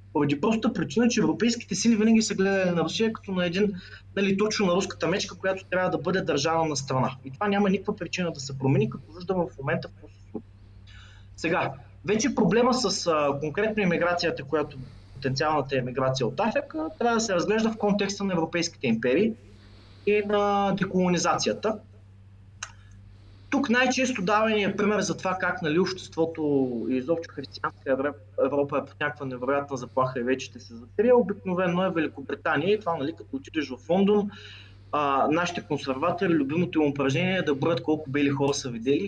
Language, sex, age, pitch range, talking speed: English, male, 20-39, 130-195 Hz, 165 wpm